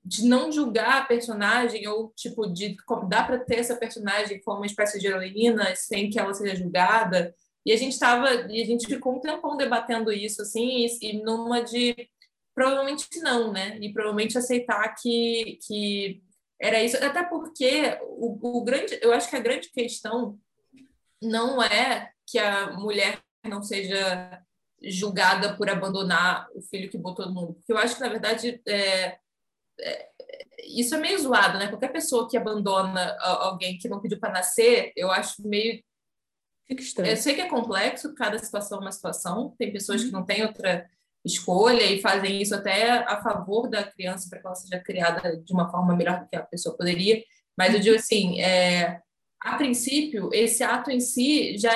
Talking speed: 175 wpm